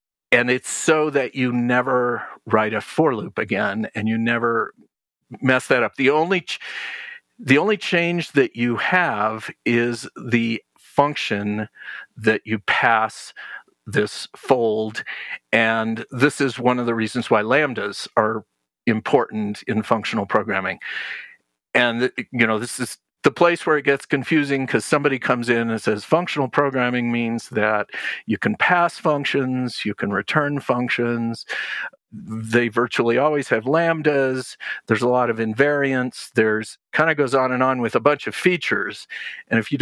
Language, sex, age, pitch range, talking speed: English, male, 50-69, 115-145 Hz, 155 wpm